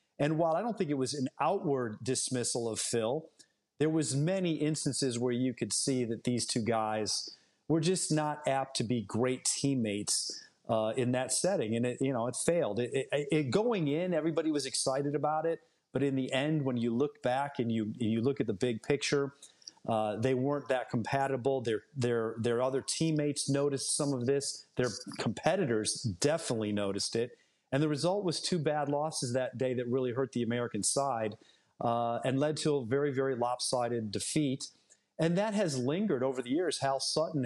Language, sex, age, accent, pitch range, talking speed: English, male, 40-59, American, 120-145 Hz, 190 wpm